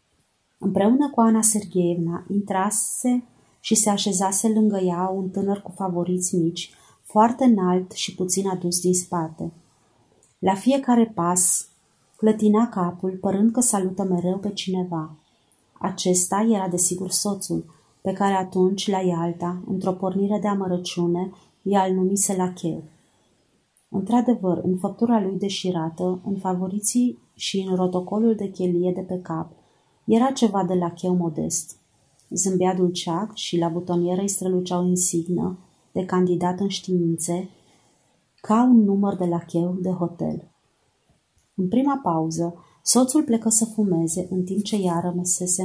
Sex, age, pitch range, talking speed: female, 30-49, 175-200 Hz, 135 wpm